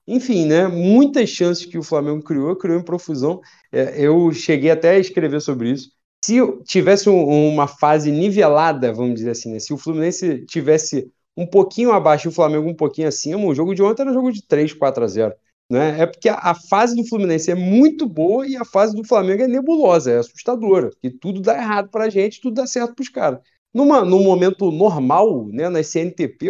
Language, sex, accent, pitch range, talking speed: Portuguese, male, Brazilian, 145-200 Hz, 205 wpm